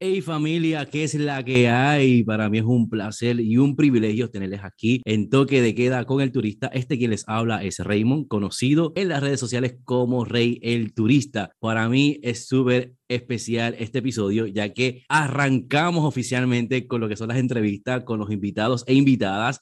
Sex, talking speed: male, 185 wpm